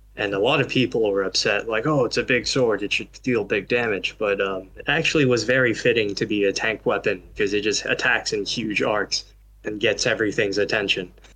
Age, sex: 20-39, male